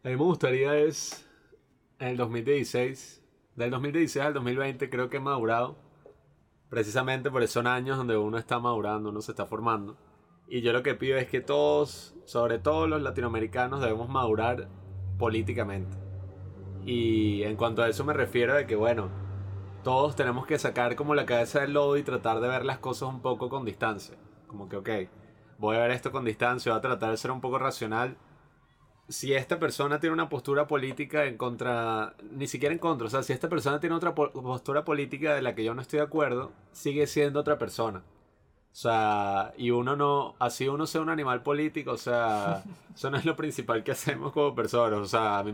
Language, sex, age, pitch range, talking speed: Spanish, male, 20-39, 115-145 Hz, 195 wpm